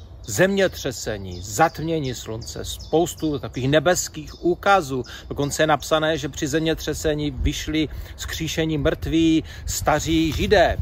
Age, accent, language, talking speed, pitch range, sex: 40-59, native, Czech, 100 wpm, 105-160 Hz, male